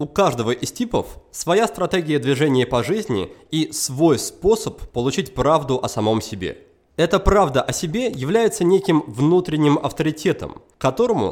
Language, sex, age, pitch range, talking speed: Russian, male, 20-39, 130-190 Hz, 140 wpm